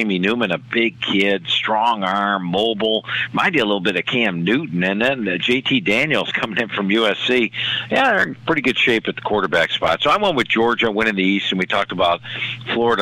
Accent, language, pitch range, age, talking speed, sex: American, English, 95-120 Hz, 50-69, 225 wpm, male